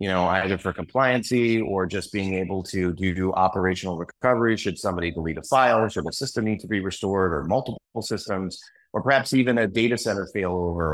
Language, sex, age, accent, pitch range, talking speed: English, male, 30-49, American, 95-110 Hz, 195 wpm